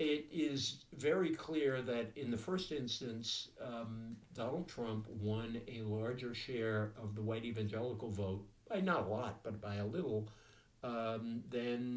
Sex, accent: male, American